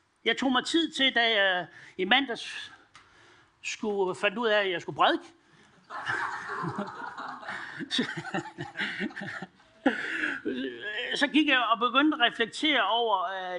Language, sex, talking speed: Danish, male, 125 wpm